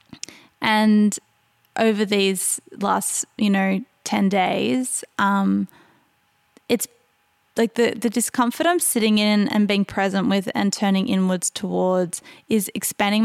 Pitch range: 195-235 Hz